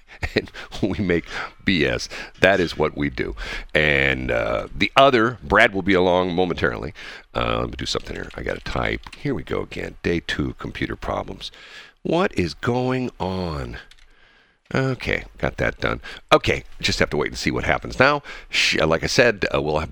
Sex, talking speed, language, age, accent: male, 180 wpm, English, 50-69, American